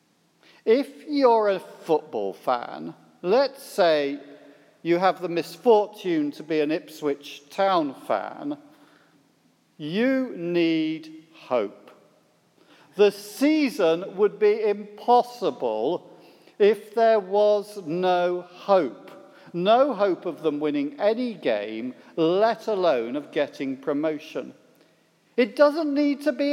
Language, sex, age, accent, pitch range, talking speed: English, male, 50-69, British, 185-260 Hz, 105 wpm